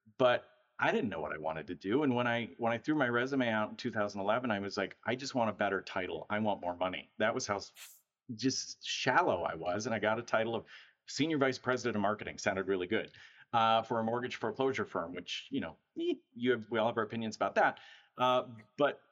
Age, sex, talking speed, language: 40-59, male, 230 wpm, English